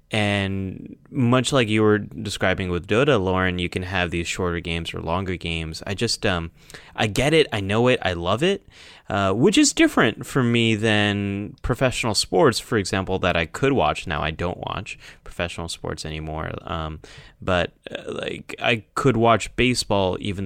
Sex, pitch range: male, 85-120 Hz